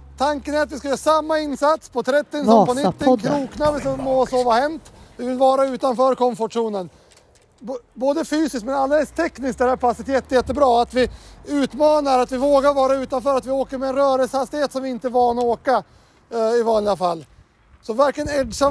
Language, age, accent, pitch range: Swedish, 30-49, native, 225-275 Hz